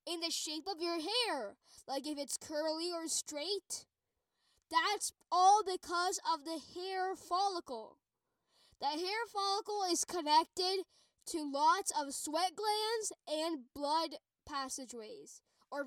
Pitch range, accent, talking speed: 305-395 Hz, American, 125 wpm